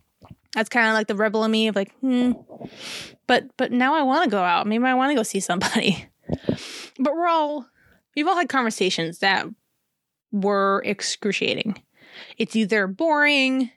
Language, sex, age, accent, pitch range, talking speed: English, female, 20-39, American, 205-265 Hz, 170 wpm